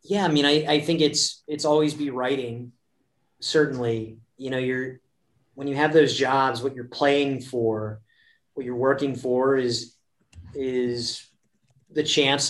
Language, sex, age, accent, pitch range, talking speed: English, male, 30-49, American, 115-135 Hz, 155 wpm